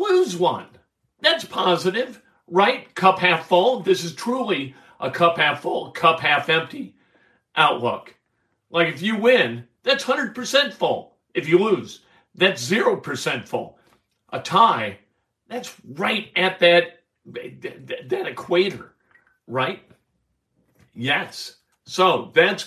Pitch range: 125-180 Hz